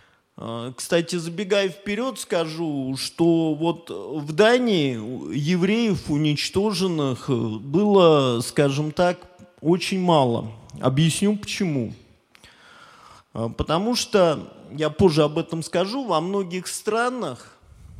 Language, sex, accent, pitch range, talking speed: Russian, male, native, 140-190 Hz, 90 wpm